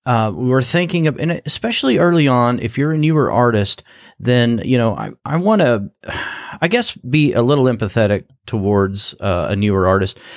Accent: American